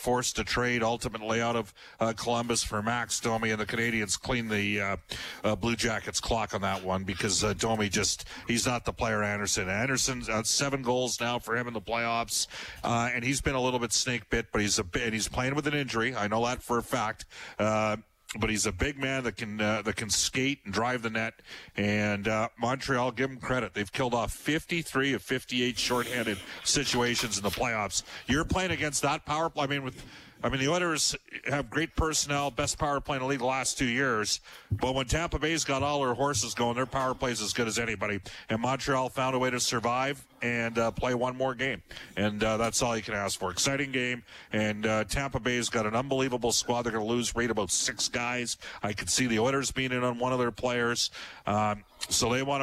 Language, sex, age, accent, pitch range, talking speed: English, male, 40-59, American, 110-130 Hz, 225 wpm